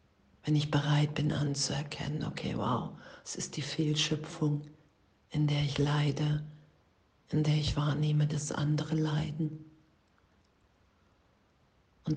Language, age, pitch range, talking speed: German, 50-69, 140-155 Hz, 115 wpm